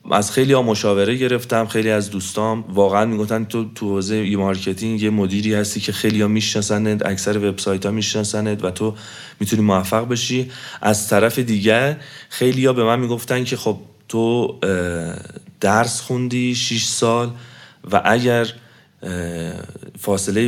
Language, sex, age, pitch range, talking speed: Persian, male, 30-49, 95-115 Hz, 145 wpm